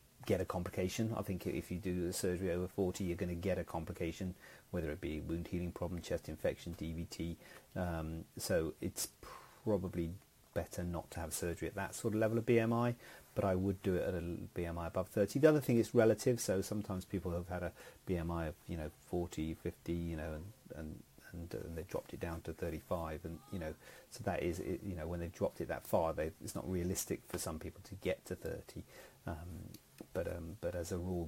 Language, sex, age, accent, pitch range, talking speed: English, male, 40-59, British, 85-105 Hz, 220 wpm